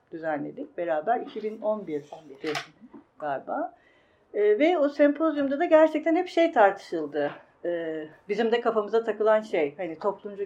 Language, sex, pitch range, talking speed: Turkish, female, 190-285 Hz, 110 wpm